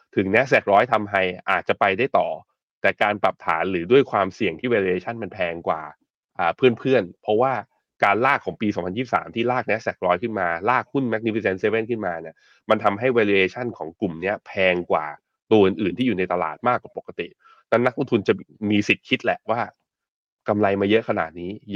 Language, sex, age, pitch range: Thai, male, 20-39, 100-125 Hz